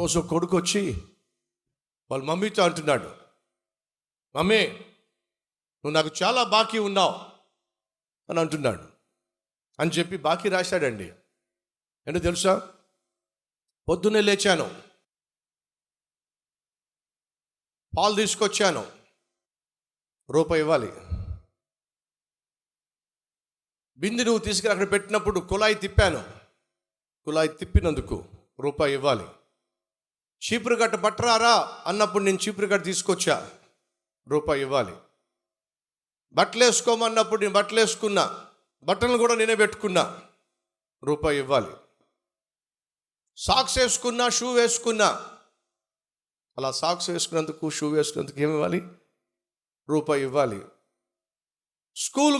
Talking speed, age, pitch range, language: 70 wpm, 50-69, 155-215 Hz, Telugu